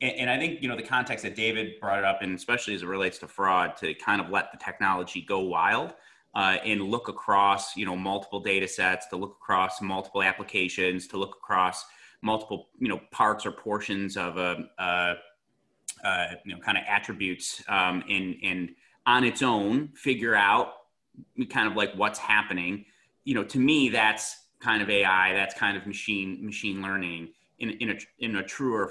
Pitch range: 95-110 Hz